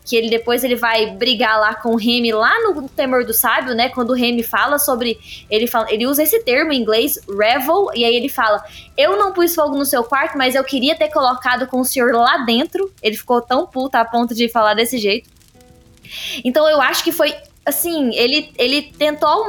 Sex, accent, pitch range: female, Brazilian, 235-310 Hz